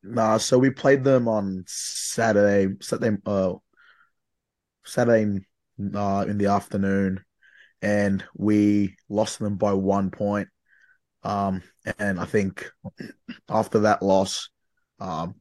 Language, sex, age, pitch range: English, male, 20-39, 100-110 Hz